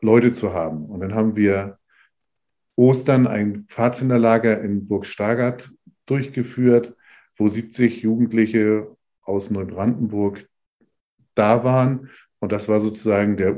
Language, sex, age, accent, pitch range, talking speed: German, male, 50-69, German, 105-115 Hz, 115 wpm